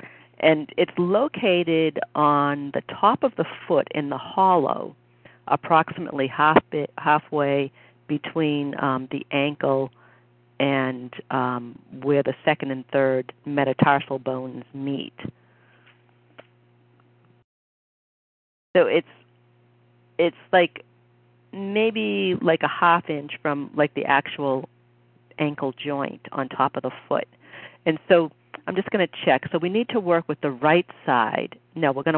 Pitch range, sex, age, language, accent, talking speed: 125-165 Hz, female, 50-69, English, American, 130 wpm